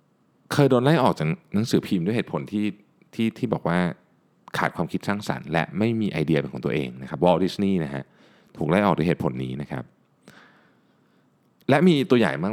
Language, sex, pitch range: Thai, male, 75-120 Hz